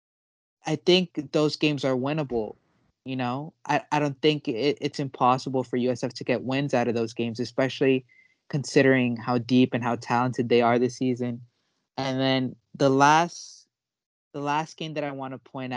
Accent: American